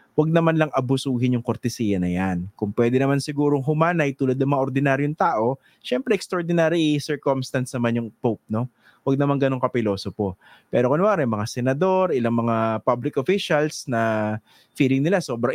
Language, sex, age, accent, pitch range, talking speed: English, male, 20-39, Filipino, 110-150 Hz, 165 wpm